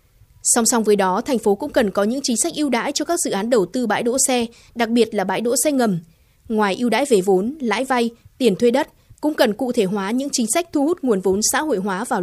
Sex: female